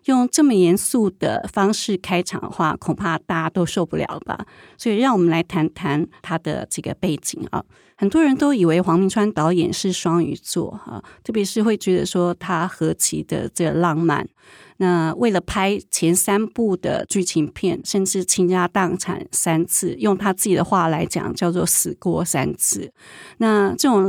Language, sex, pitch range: Chinese, female, 175-215 Hz